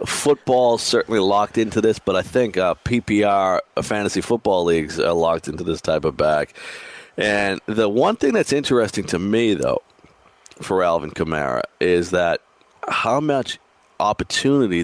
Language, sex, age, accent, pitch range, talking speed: English, male, 40-59, American, 95-120 Hz, 150 wpm